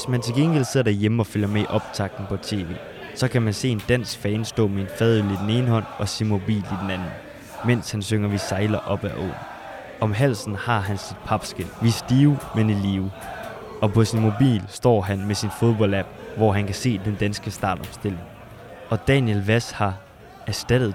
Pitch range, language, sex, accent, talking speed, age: 100-115 Hz, Danish, male, native, 210 wpm, 20-39